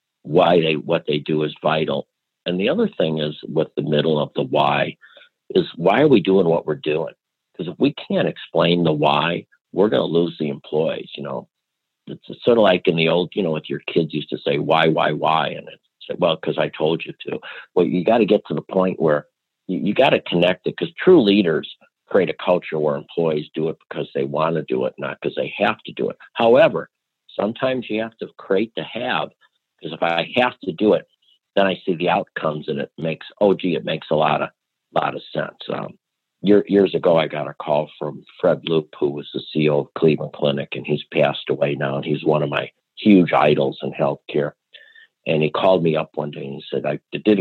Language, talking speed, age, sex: English, 230 wpm, 50-69, male